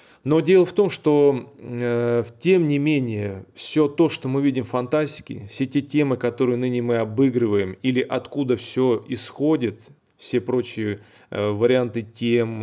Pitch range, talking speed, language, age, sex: 115-140 Hz, 145 wpm, Russian, 30-49, male